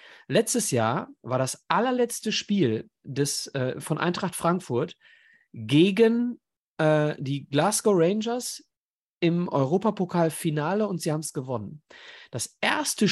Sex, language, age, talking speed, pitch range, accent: male, German, 40-59, 110 wpm, 135-215 Hz, German